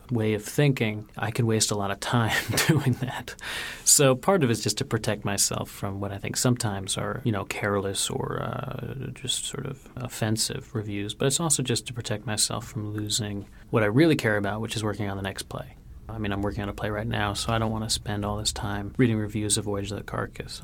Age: 30-49